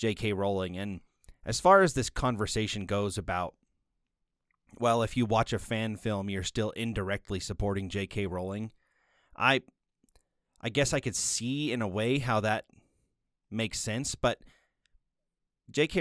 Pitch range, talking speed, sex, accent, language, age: 95-115 Hz, 140 wpm, male, American, English, 30-49